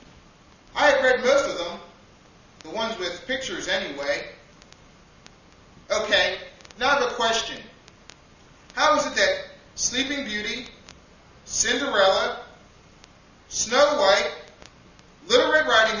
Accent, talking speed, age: American, 95 wpm, 30-49